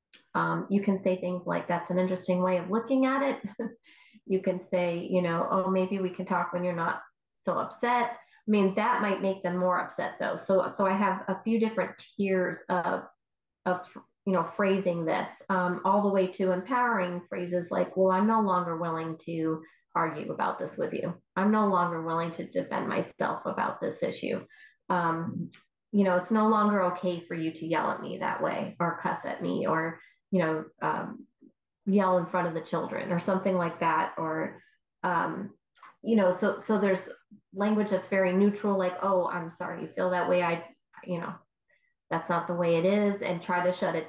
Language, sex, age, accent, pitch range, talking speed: English, female, 30-49, American, 175-200 Hz, 200 wpm